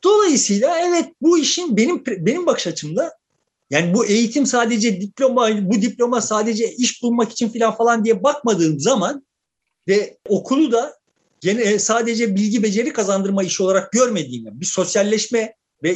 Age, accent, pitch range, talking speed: 50-69, native, 185-260 Hz, 145 wpm